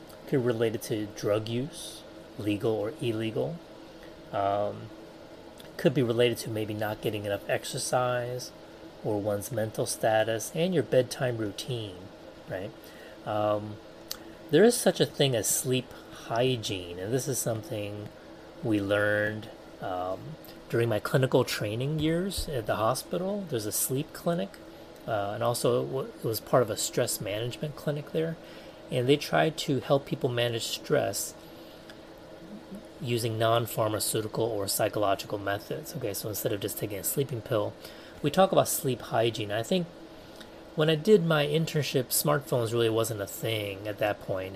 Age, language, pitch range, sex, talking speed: 30-49, English, 105-135 Hz, male, 145 wpm